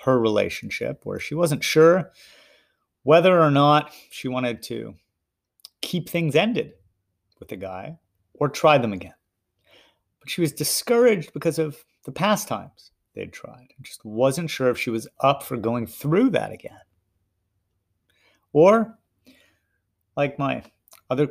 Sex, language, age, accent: male, English, 30-49, American